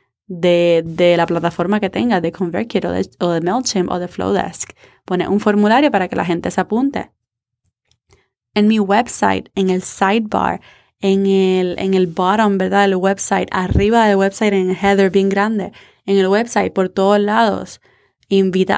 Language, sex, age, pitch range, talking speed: Spanish, female, 20-39, 190-230 Hz, 175 wpm